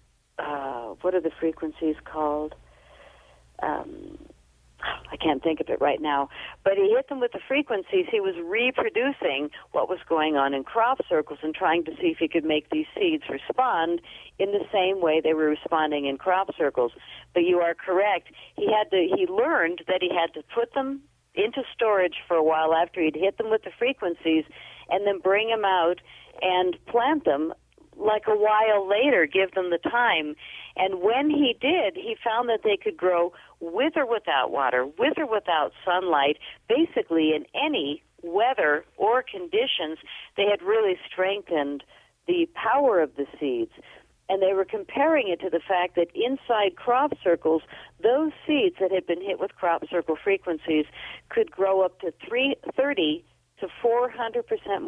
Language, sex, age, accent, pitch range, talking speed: English, female, 50-69, American, 160-245 Hz, 170 wpm